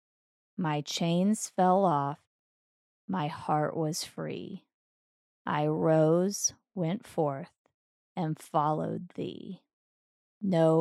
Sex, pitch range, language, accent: female, 155-190 Hz, English, American